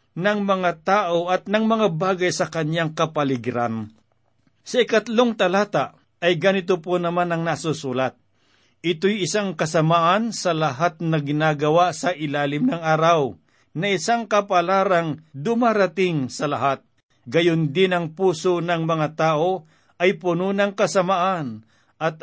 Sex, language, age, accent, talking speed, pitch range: male, Filipino, 50-69, native, 130 wpm, 150-185 Hz